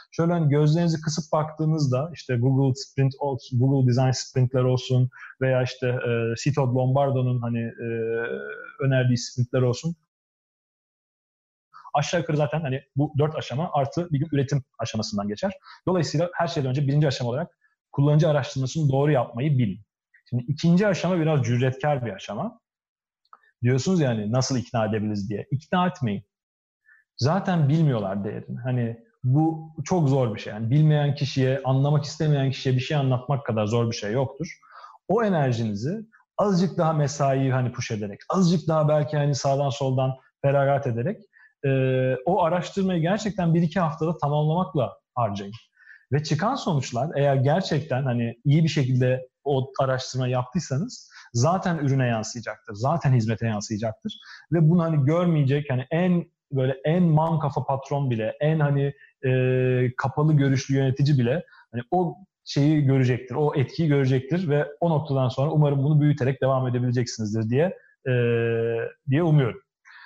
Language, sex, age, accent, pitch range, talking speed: Turkish, male, 40-59, native, 125-155 Hz, 145 wpm